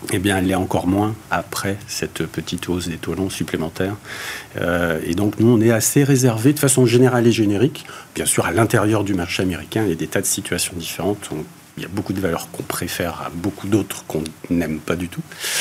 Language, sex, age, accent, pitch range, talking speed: French, male, 50-69, French, 95-120 Hz, 225 wpm